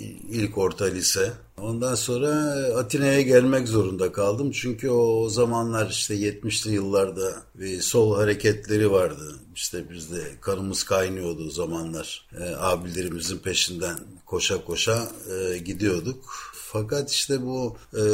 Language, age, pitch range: Turkish, 60-79, 105-130 Hz